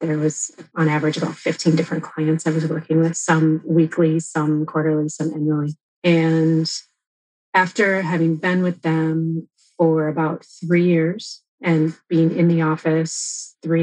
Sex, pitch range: female, 160-180 Hz